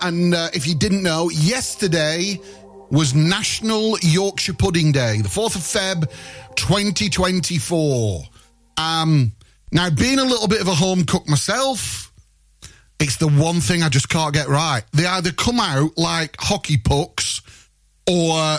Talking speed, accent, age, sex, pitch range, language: 145 wpm, British, 30-49, male, 140-195 Hz, English